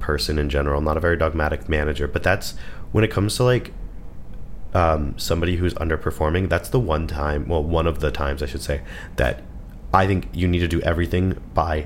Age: 30-49